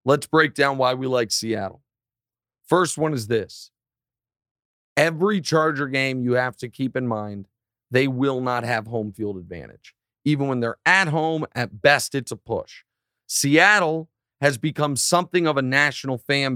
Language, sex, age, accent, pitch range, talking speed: English, male, 40-59, American, 120-155 Hz, 165 wpm